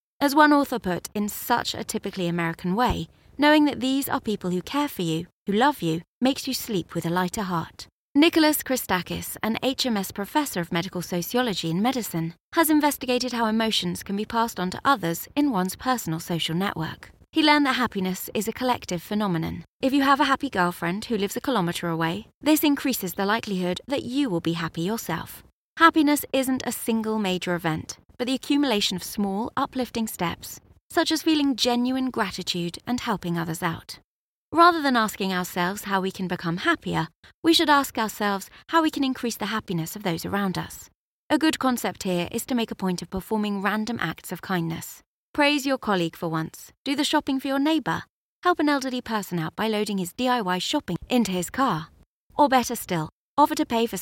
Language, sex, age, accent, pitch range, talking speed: English, female, 20-39, British, 180-270 Hz, 195 wpm